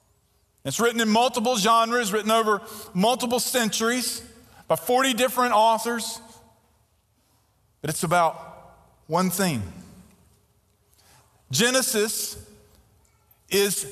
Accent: American